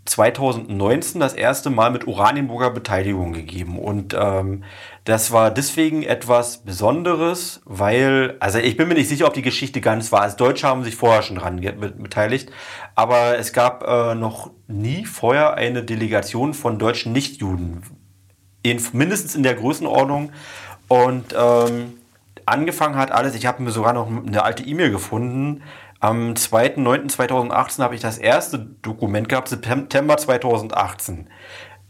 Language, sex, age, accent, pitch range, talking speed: German, male, 30-49, German, 110-130 Hz, 145 wpm